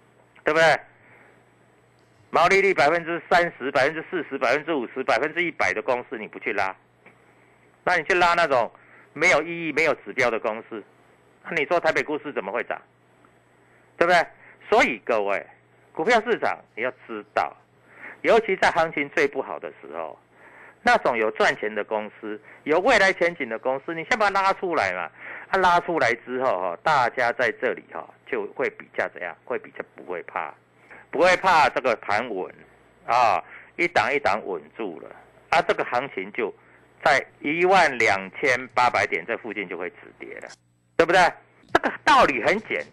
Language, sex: Chinese, male